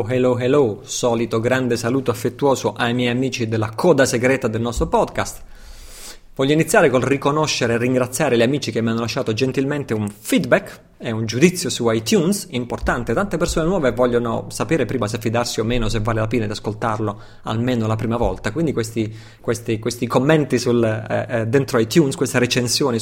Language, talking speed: Italian, 165 wpm